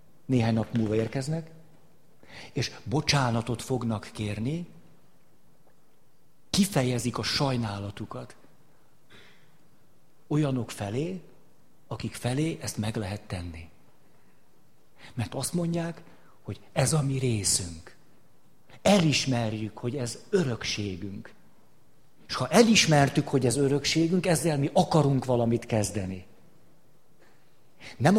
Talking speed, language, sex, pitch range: 90 wpm, Hungarian, male, 115-155 Hz